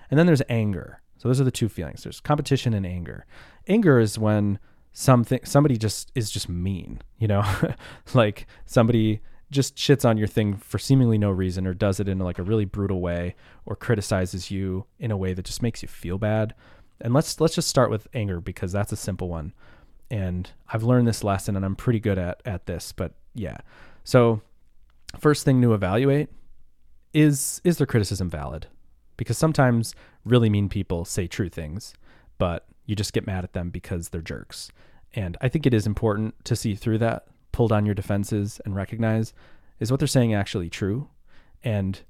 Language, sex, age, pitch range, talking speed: English, male, 20-39, 90-115 Hz, 190 wpm